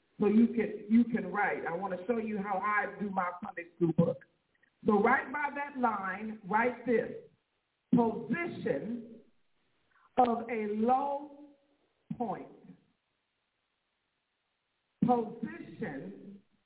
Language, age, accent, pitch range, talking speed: English, 50-69, American, 205-245 Hz, 110 wpm